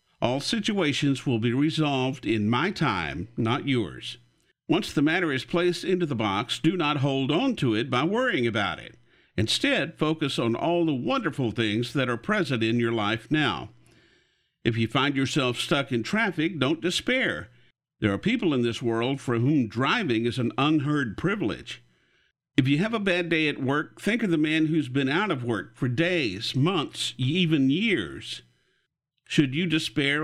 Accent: American